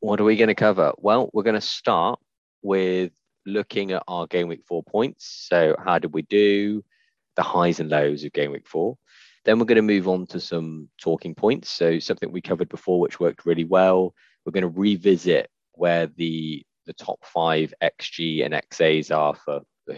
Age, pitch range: 20-39, 80-95 Hz